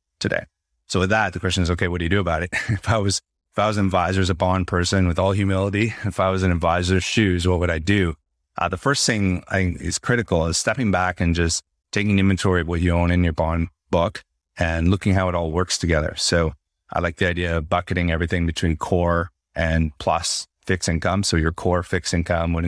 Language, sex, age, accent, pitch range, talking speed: English, male, 30-49, American, 85-95 Hz, 230 wpm